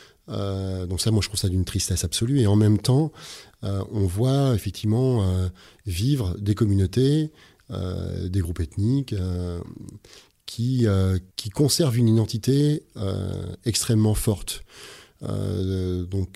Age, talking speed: 30-49, 140 wpm